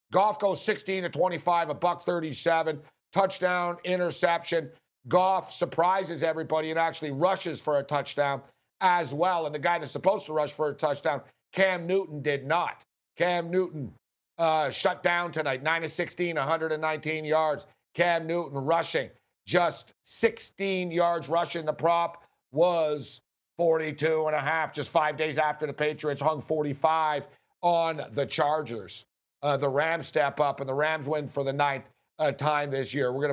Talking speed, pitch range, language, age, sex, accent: 160 wpm, 150-175 Hz, English, 60-79, male, American